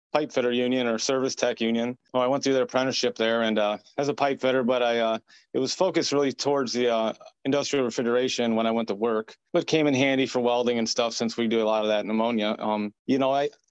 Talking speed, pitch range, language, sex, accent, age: 255 wpm, 115-130 Hz, English, male, American, 30-49